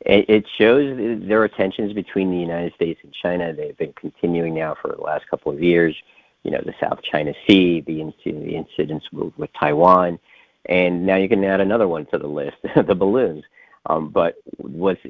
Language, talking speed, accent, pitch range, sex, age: English, 185 wpm, American, 80-90 Hz, male, 50-69